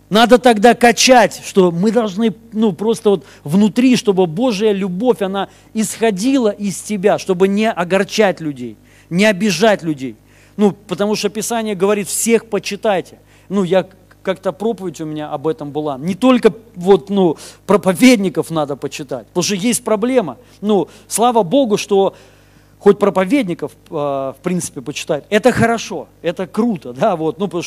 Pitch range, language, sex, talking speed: 155-215 Hz, Russian, male, 150 wpm